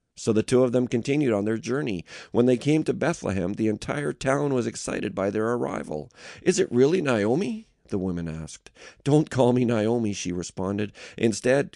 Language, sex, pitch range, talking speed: English, male, 95-125 Hz, 185 wpm